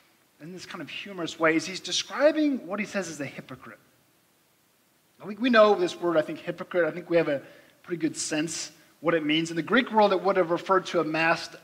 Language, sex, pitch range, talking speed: English, male, 165-215 Hz, 225 wpm